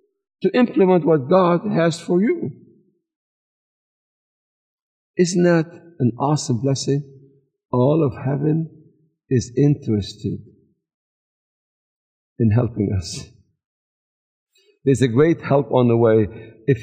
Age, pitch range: 60-79, 150-220 Hz